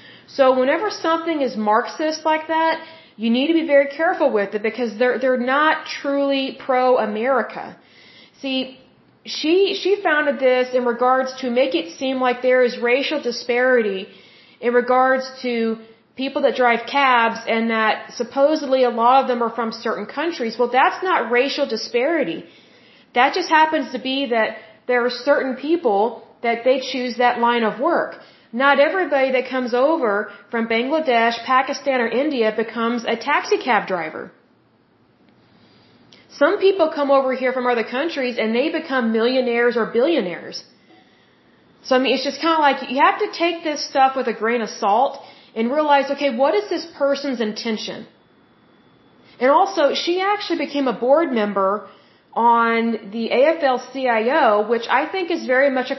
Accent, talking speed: American, 165 wpm